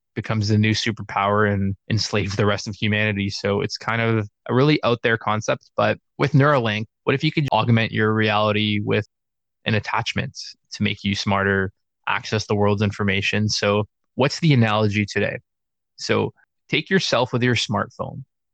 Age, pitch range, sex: 20-39, 105-115 Hz, male